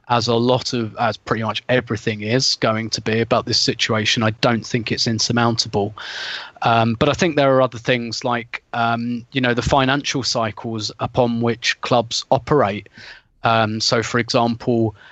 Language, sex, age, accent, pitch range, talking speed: English, male, 30-49, British, 115-130 Hz, 170 wpm